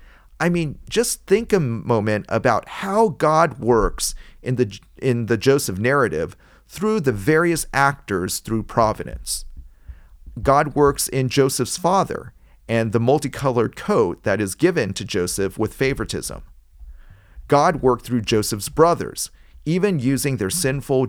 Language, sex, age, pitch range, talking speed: English, male, 40-59, 95-135 Hz, 135 wpm